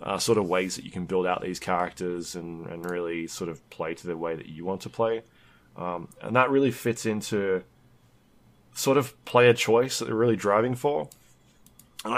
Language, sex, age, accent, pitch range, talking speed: English, male, 20-39, Australian, 90-120 Hz, 200 wpm